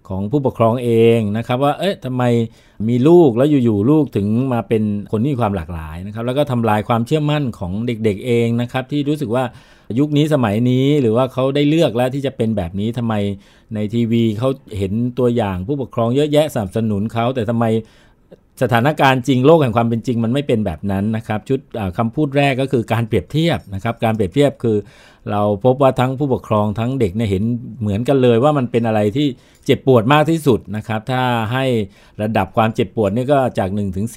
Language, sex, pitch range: Thai, male, 110-135 Hz